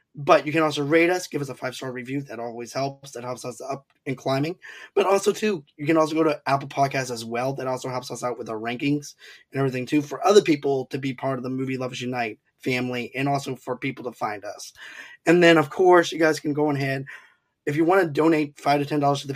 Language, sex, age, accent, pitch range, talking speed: English, male, 20-39, American, 130-155 Hz, 250 wpm